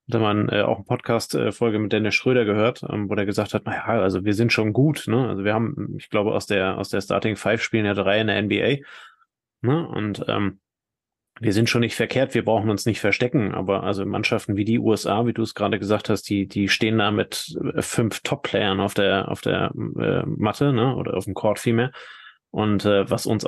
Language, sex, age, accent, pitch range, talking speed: German, male, 20-39, German, 105-125 Hz, 225 wpm